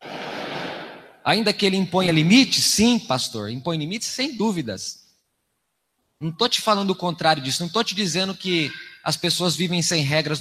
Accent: Brazilian